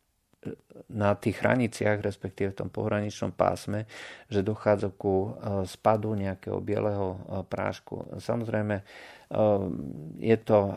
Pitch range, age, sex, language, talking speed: 95-105 Hz, 40-59, male, Slovak, 100 wpm